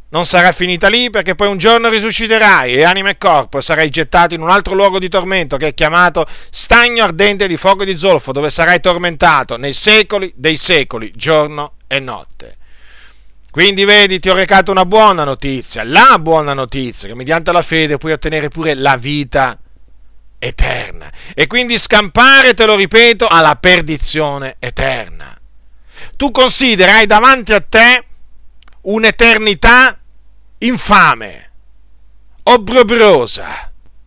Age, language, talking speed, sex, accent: 50-69, Italian, 135 wpm, male, native